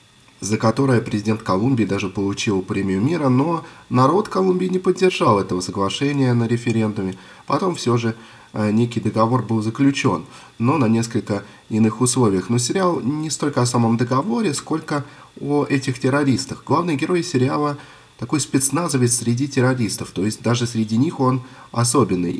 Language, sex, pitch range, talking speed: Russian, male, 105-135 Hz, 145 wpm